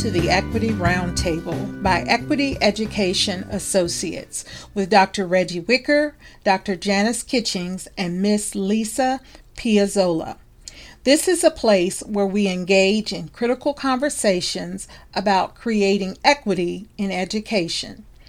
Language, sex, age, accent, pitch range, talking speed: English, female, 40-59, American, 190-240 Hz, 110 wpm